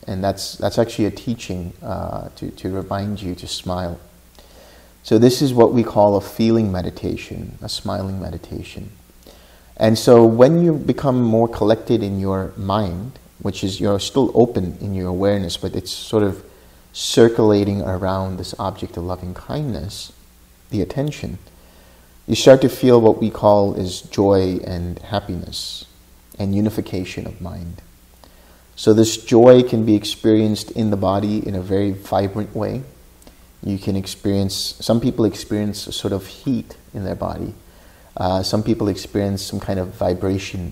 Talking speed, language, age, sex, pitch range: 155 wpm, English, 30-49, male, 90-110 Hz